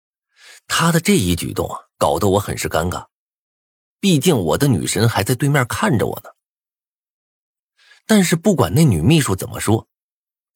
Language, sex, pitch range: Chinese, male, 95-140 Hz